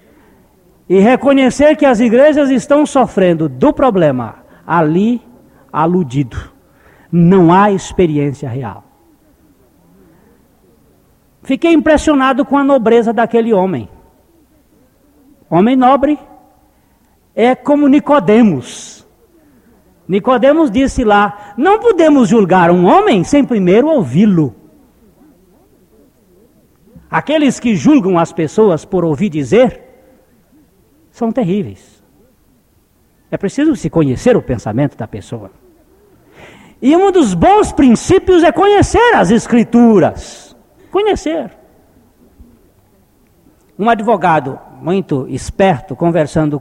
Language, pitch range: Portuguese, 155-265 Hz